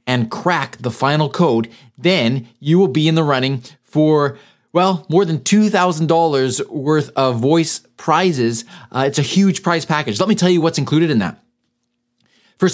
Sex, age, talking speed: male, 30-49, 170 wpm